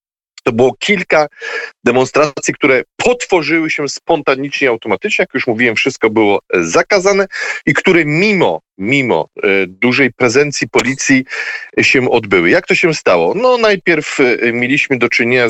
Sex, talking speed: male, 130 wpm